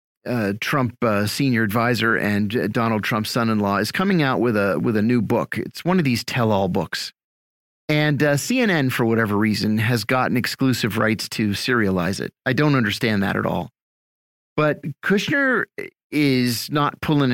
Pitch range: 120-175 Hz